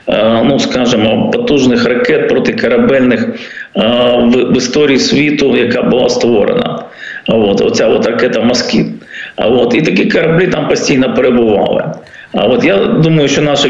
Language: Ukrainian